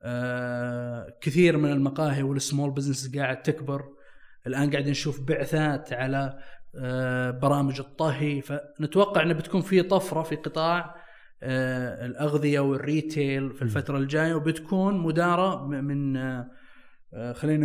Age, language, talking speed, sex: 20-39, Arabic, 100 wpm, male